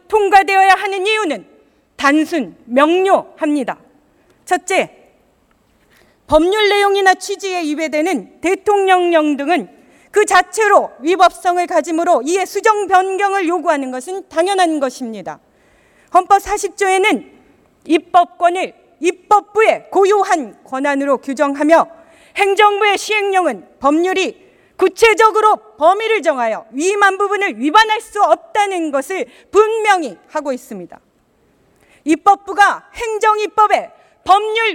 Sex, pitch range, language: female, 325-405 Hz, Korean